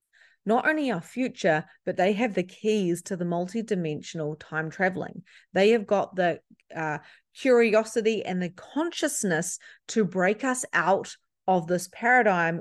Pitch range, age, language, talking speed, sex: 175-240 Hz, 30-49, English, 145 wpm, female